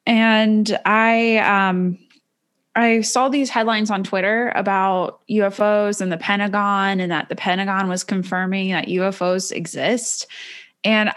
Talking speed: 130 wpm